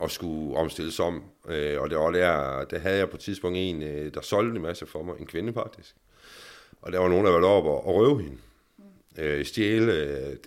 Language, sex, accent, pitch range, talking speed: Danish, male, native, 75-105 Hz, 220 wpm